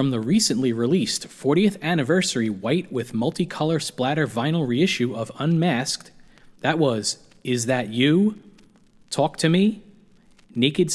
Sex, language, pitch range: male, English, 120-175 Hz